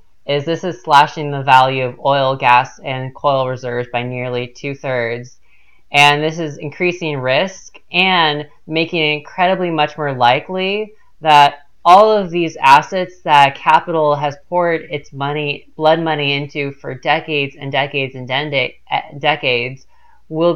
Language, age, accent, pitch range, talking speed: English, 20-39, American, 135-165 Hz, 145 wpm